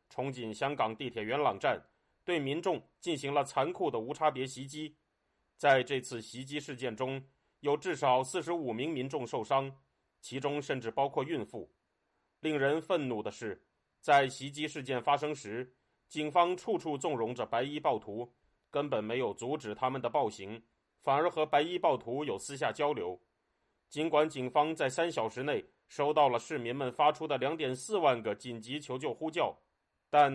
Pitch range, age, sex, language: 130-155 Hz, 30-49, male, Chinese